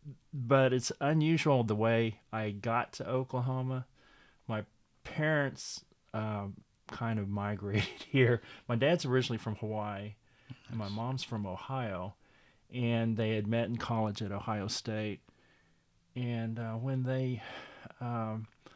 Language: English